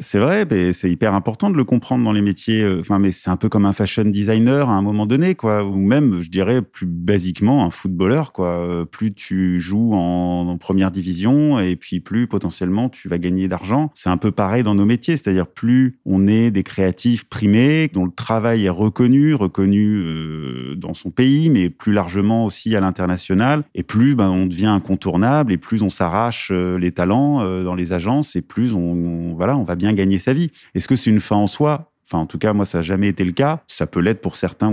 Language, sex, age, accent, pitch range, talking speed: French, male, 30-49, French, 90-115 Hz, 220 wpm